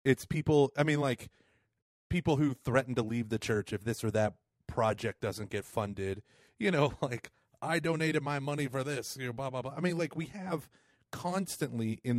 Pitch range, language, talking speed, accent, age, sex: 110-145 Hz, English, 200 wpm, American, 30-49, male